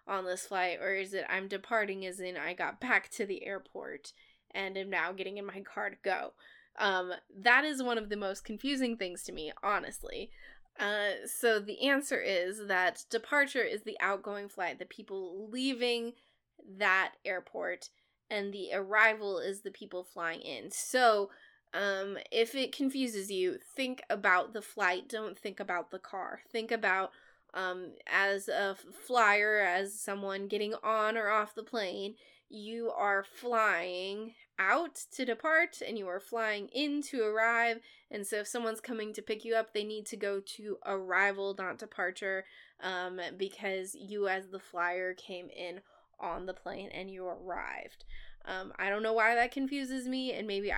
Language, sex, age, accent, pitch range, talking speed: English, female, 10-29, American, 190-230 Hz, 170 wpm